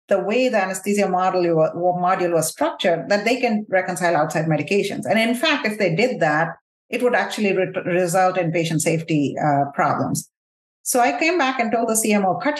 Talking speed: 180 wpm